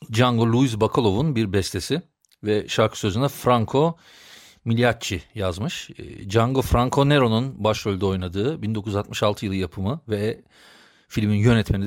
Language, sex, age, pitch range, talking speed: Turkish, male, 40-59, 100-120 Hz, 110 wpm